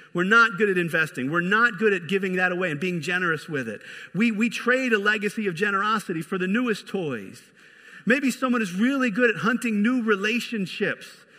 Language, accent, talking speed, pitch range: English, American, 195 wpm, 180-235 Hz